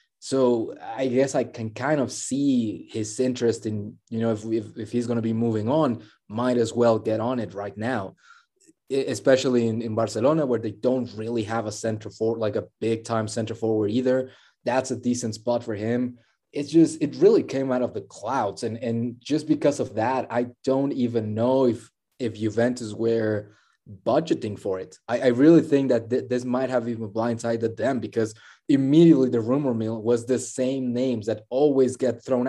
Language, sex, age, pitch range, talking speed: English, male, 20-39, 115-130 Hz, 195 wpm